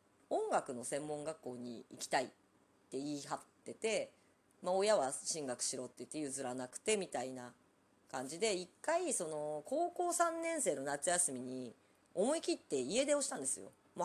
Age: 40-59